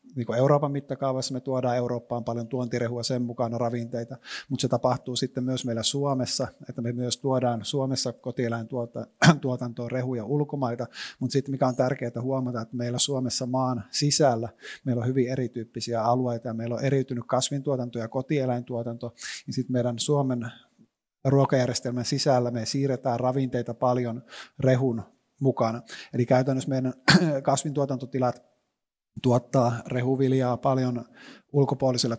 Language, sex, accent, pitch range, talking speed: Finnish, male, native, 120-130 Hz, 125 wpm